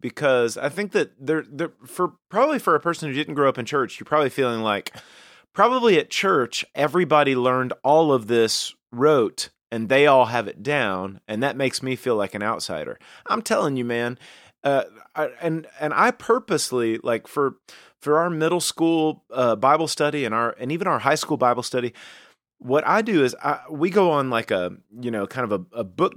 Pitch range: 115-150 Hz